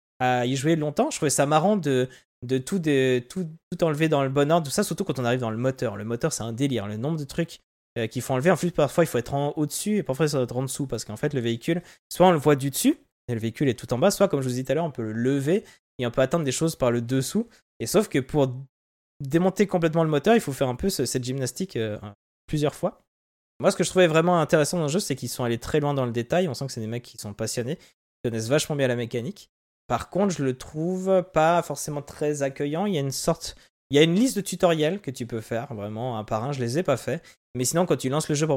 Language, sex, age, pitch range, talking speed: French, male, 20-39, 125-170 Hz, 295 wpm